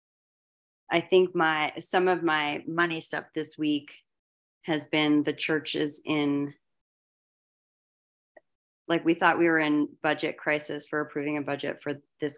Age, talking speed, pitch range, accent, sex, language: 30-49, 140 wpm, 145-175 Hz, American, female, English